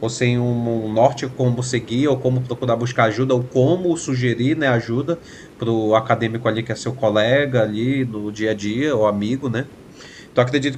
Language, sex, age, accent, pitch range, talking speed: Portuguese, male, 20-39, Brazilian, 125-175 Hz, 190 wpm